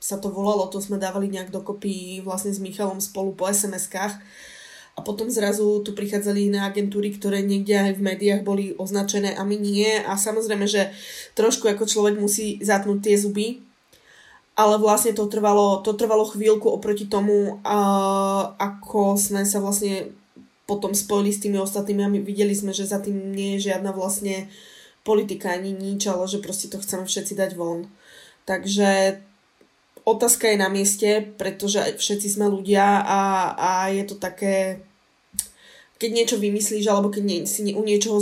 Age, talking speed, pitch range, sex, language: 20-39, 160 wpm, 195-205 Hz, female, English